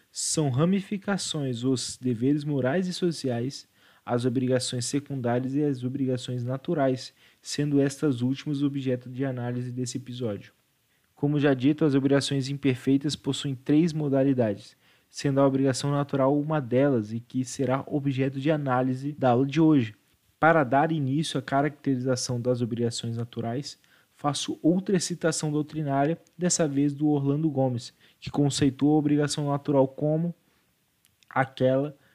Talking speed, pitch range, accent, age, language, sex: 135 wpm, 130-155 Hz, Brazilian, 20-39, Portuguese, male